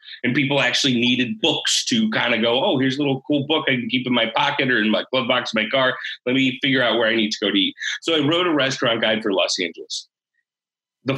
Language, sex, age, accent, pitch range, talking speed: English, male, 30-49, American, 120-155 Hz, 270 wpm